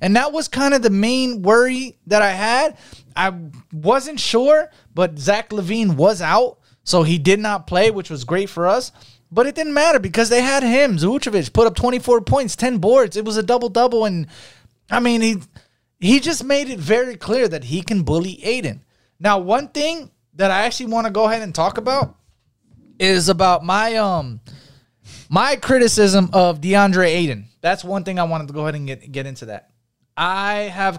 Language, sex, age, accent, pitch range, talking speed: English, male, 20-39, American, 135-210 Hz, 195 wpm